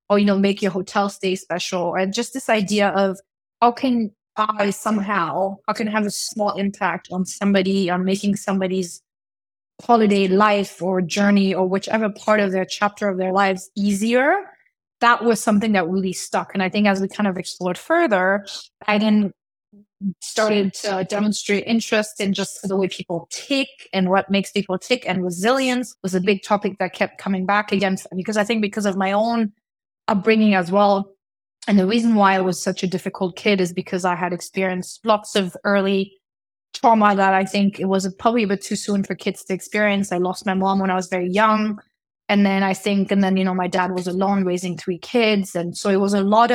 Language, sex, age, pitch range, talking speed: English, female, 20-39, 190-215 Hz, 205 wpm